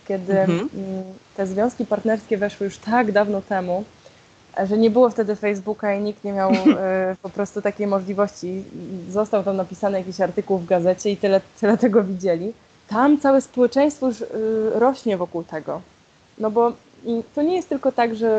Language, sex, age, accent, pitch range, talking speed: Polish, female, 20-39, native, 190-235 Hz, 160 wpm